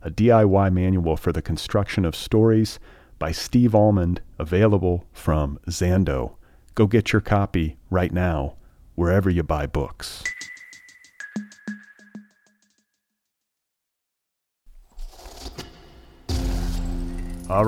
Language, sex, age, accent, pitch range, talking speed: English, male, 40-59, American, 85-110 Hz, 85 wpm